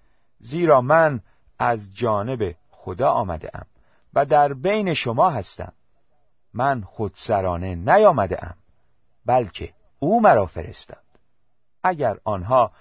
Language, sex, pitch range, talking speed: Persian, male, 90-140 Hz, 95 wpm